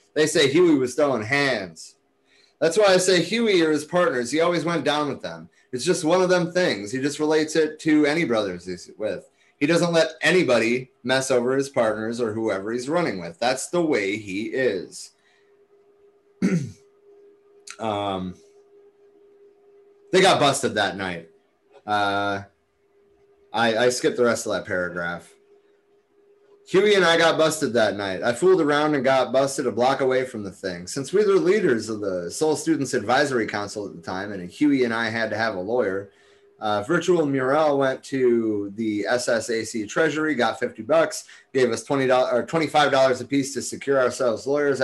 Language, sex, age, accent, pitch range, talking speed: English, male, 30-49, American, 110-180 Hz, 175 wpm